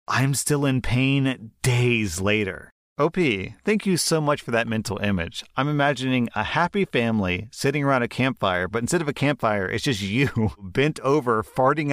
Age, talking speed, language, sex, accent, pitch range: 30-49, 175 wpm, English, male, American, 100-125 Hz